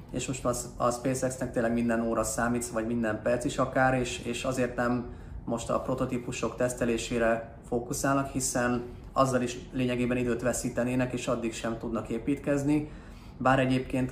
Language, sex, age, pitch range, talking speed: Hungarian, male, 30-49, 115-130 Hz, 145 wpm